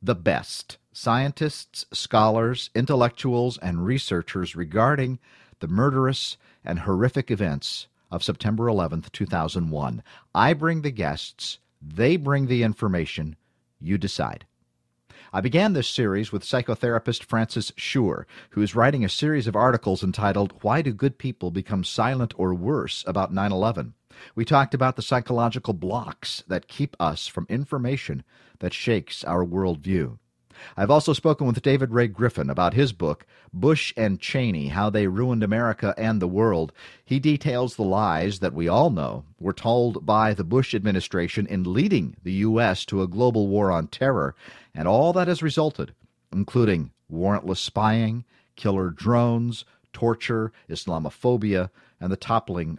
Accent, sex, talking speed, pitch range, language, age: American, male, 145 wpm, 95-125 Hz, English, 50-69